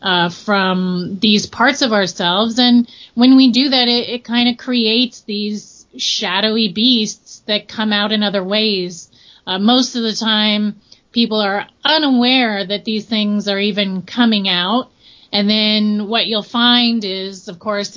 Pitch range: 205-240 Hz